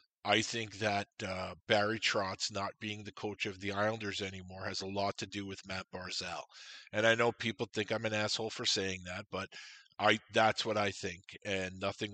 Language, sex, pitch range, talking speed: English, male, 100-115 Hz, 205 wpm